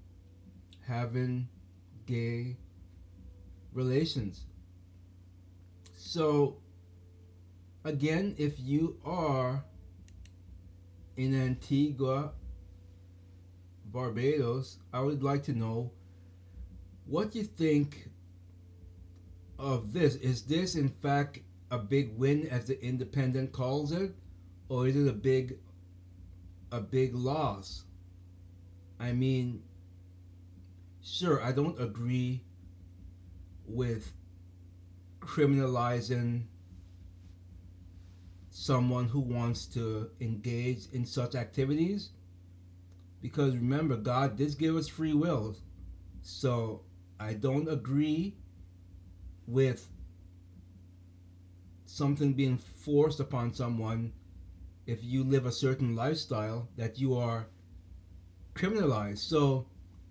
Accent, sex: American, male